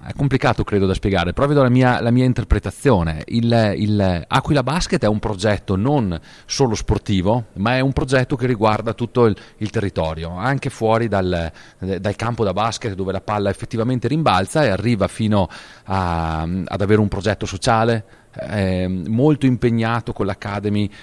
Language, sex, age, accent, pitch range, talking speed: Italian, male, 40-59, native, 95-125 Hz, 165 wpm